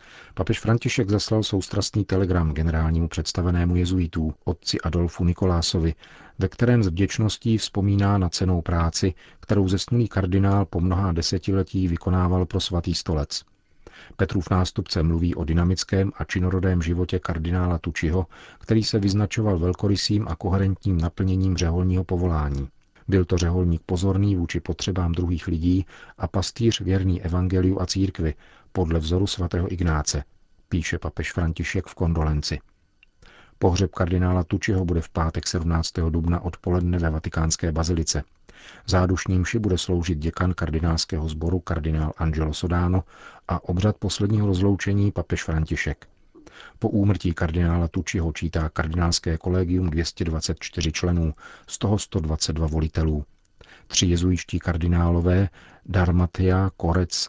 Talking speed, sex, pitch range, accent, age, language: 125 wpm, male, 85-95 Hz, native, 40-59, Czech